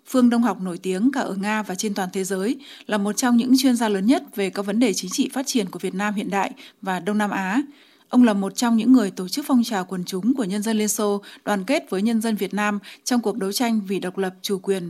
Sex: female